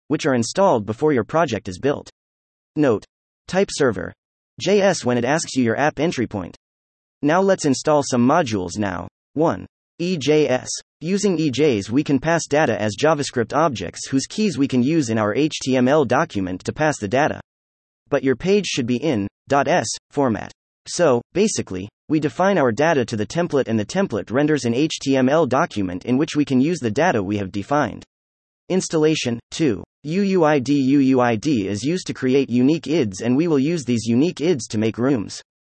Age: 30-49